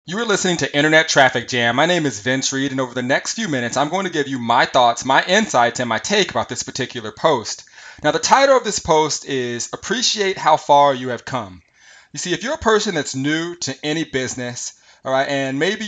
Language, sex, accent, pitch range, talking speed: English, male, American, 130-175 Hz, 235 wpm